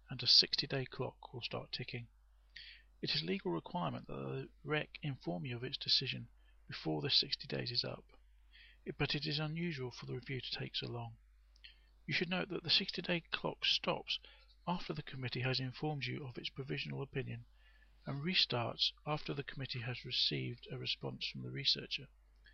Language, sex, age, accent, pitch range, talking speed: English, male, 40-59, British, 115-155 Hz, 180 wpm